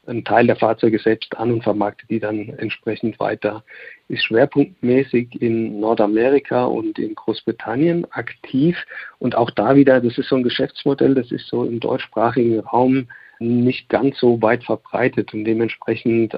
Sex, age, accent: male, 50-69, German